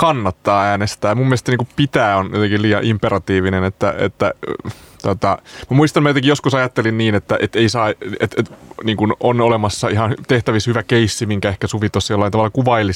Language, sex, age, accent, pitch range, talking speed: Finnish, male, 30-49, native, 95-115 Hz, 180 wpm